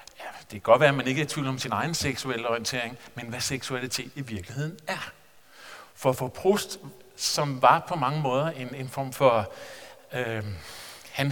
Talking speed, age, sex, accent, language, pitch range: 195 wpm, 50-69, male, Danish, English, 125-150 Hz